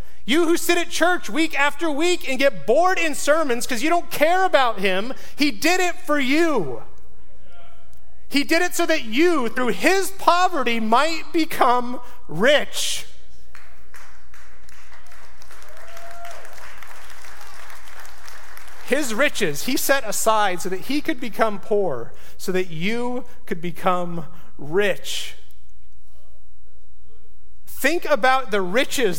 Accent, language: American, English